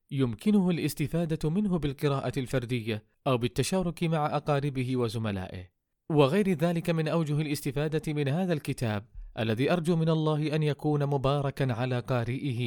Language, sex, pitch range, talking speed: Arabic, male, 115-155 Hz, 130 wpm